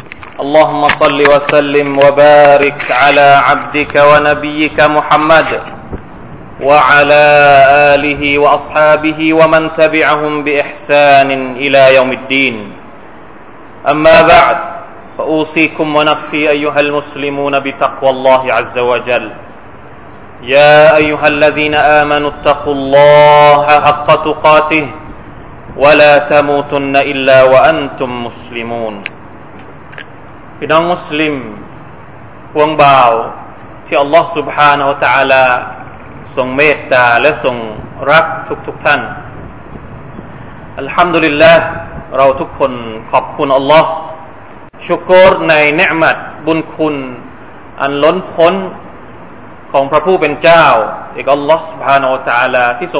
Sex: male